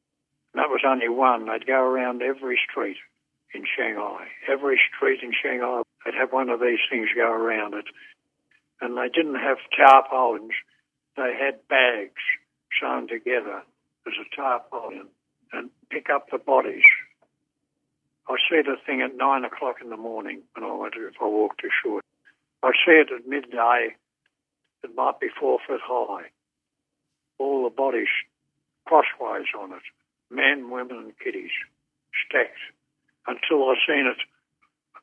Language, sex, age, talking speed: English, male, 60-79, 150 wpm